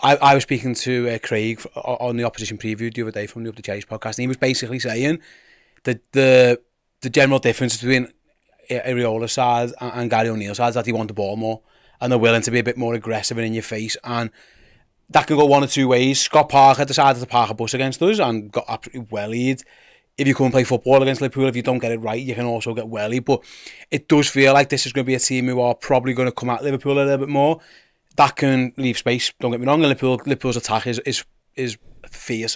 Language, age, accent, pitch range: English, 30-49, British, 120-135 Hz